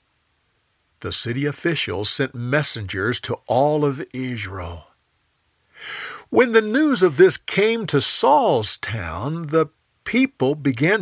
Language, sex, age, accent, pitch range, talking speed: English, male, 50-69, American, 115-165 Hz, 115 wpm